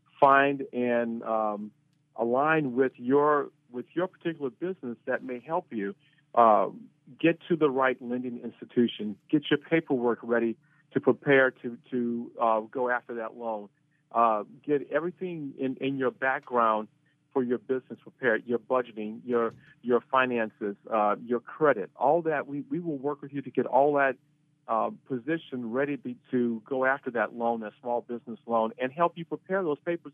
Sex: male